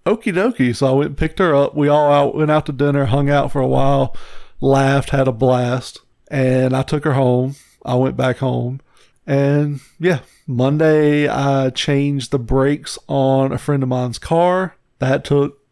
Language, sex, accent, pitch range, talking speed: English, male, American, 130-155 Hz, 180 wpm